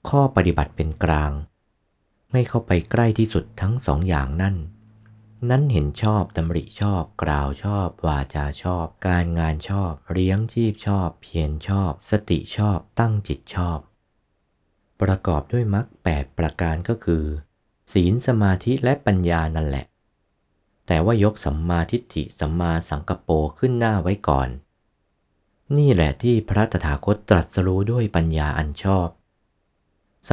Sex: male